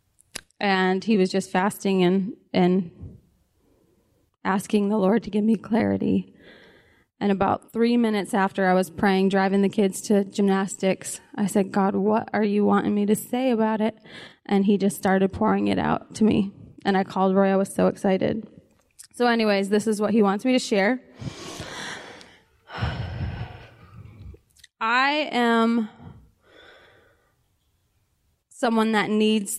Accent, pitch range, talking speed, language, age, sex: American, 190-220 Hz, 145 wpm, English, 20-39, female